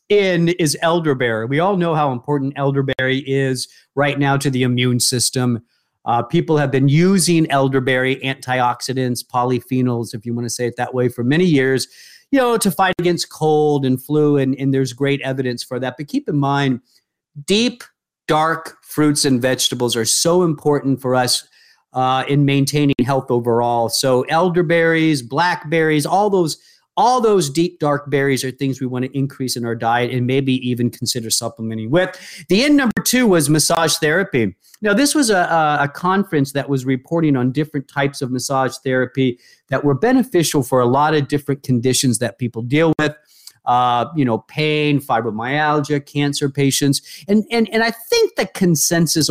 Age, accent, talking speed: 40-59, American, 175 wpm